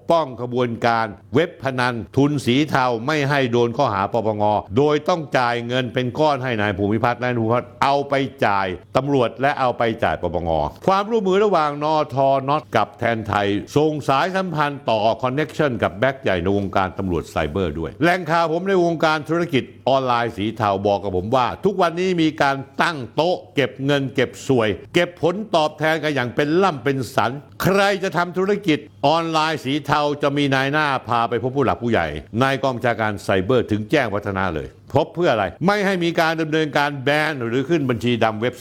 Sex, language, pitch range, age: male, Thai, 115-155 Hz, 60-79